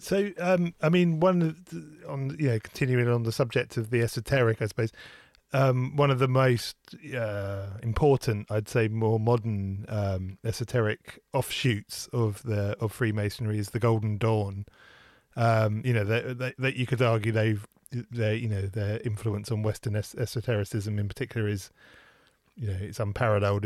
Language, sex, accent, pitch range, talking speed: English, male, British, 105-130 Hz, 165 wpm